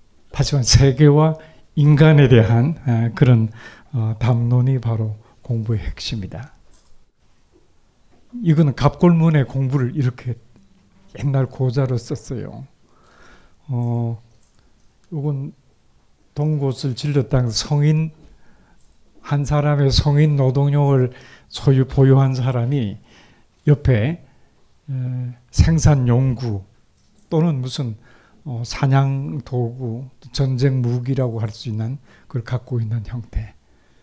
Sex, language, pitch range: male, Korean, 115-145 Hz